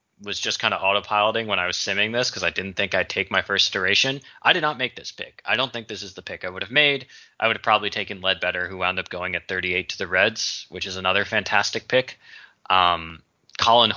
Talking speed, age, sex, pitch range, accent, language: 250 wpm, 20-39, male, 95-110 Hz, American, English